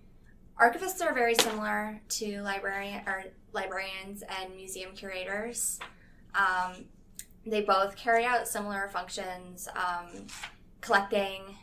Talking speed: 95 wpm